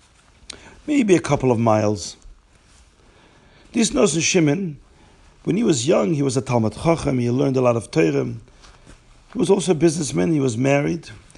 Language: English